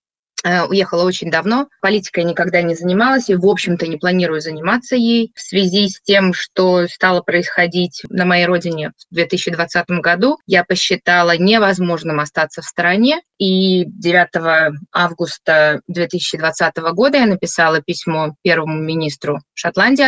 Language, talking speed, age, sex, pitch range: Russian, 130 wpm, 20-39, female, 170-200 Hz